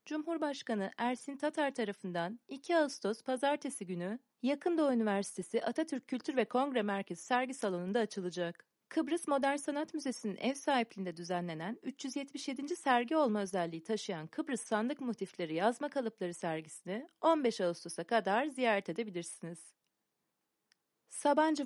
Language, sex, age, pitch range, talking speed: Turkish, female, 30-49, 195-285 Hz, 120 wpm